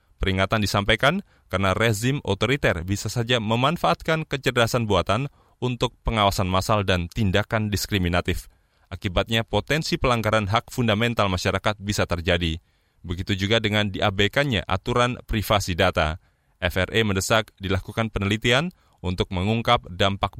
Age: 20-39